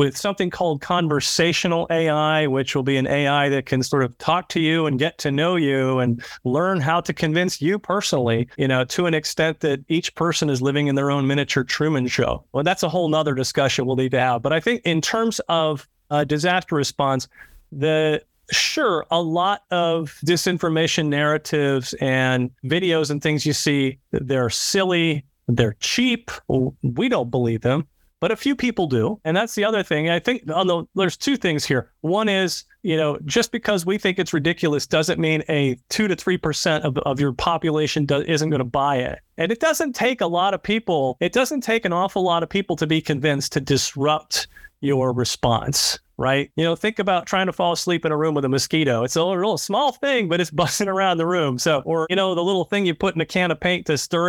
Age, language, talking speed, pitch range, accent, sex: 40-59, English, 215 wpm, 140-185 Hz, American, male